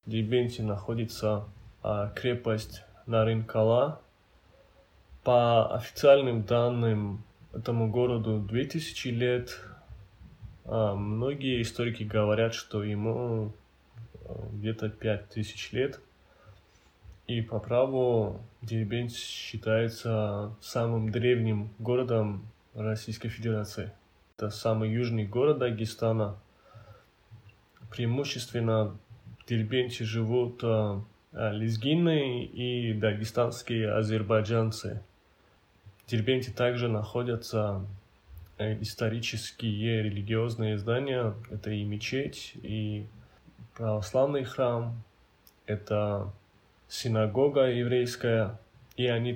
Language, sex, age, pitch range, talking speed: Russian, male, 20-39, 105-120 Hz, 75 wpm